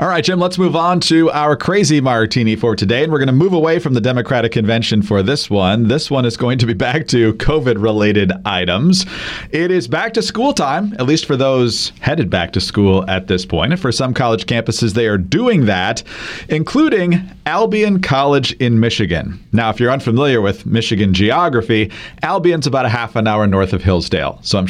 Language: English